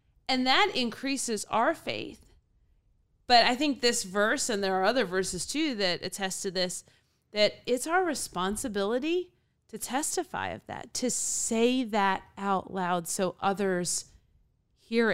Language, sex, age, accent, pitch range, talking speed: English, female, 30-49, American, 180-230 Hz, 145 wpm